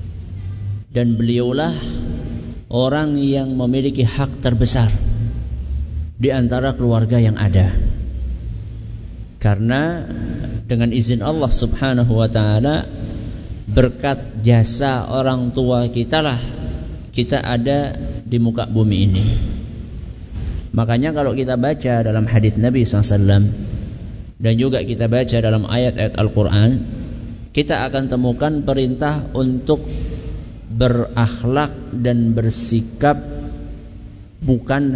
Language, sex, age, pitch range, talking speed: Malay, male, 50-69, 105-130 Hz, 95 wpm